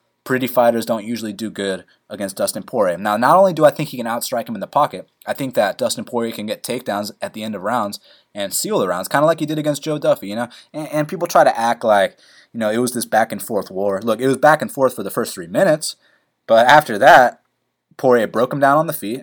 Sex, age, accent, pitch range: male, 20-39, American, 110-155 Hz